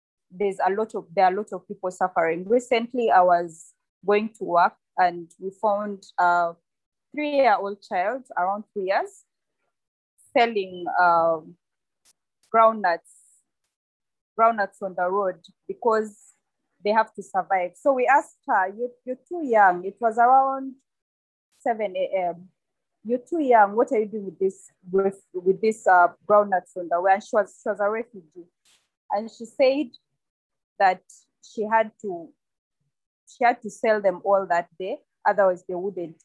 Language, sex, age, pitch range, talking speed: English, female, 20-39, 185-230 Hz, 155 wpm